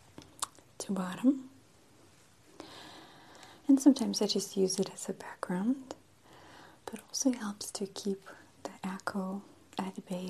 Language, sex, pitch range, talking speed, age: English, female, 205-265 Hz, 115 wpm, 30-49